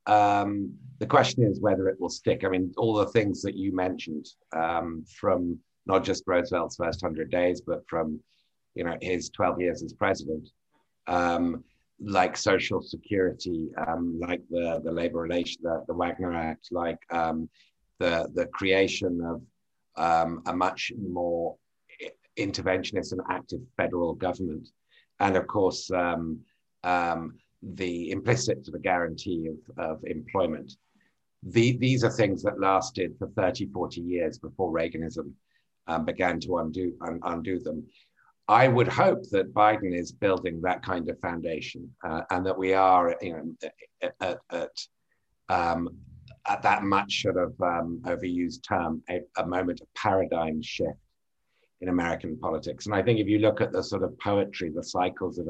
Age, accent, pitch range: 50-69, British, 85-95 Hz